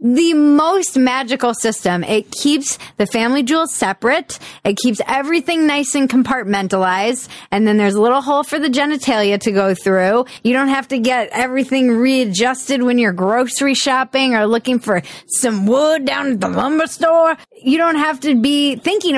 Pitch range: 210-285 Hz